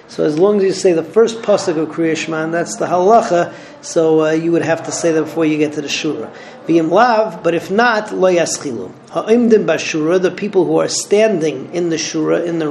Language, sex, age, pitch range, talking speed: English, male, 40-59, 160-195 Hz, 220 wpm